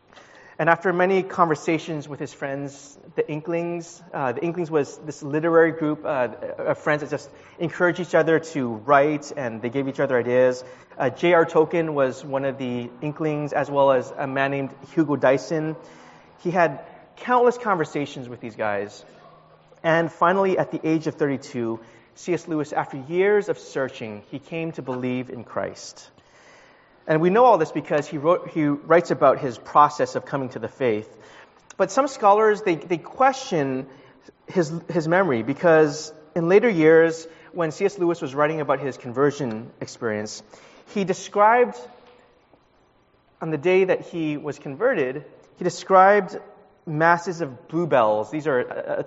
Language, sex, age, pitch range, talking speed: English, male, 30-49, 140-175 Hz, 160 wpm